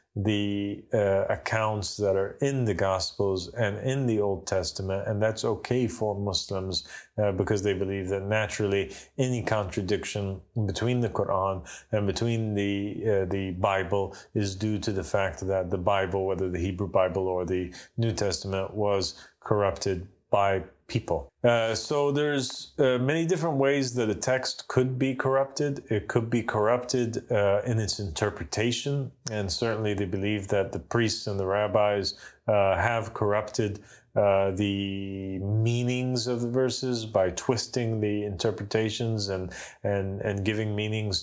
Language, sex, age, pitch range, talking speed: English, male, 30-49, 100-120 Hz, 150 wpm